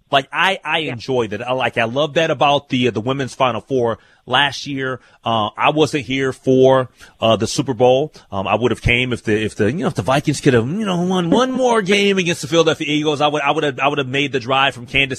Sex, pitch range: male, 115-150 Hz